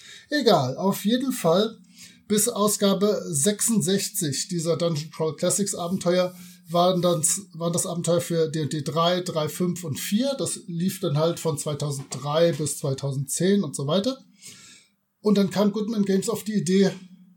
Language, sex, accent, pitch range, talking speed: German, male, German, 170-205 Hz, 145 wpm